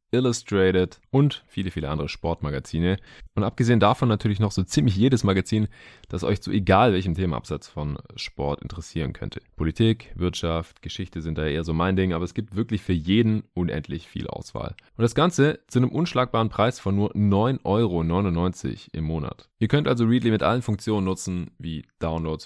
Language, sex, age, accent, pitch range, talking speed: German, male, 20-39, German, 85-115 Hz, 175 wpm